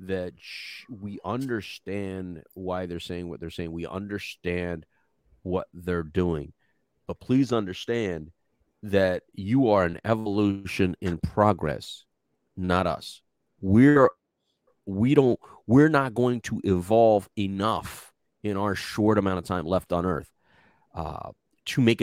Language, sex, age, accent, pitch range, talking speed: English, male, 40-59, American, 90-110 Hz, 130 wpm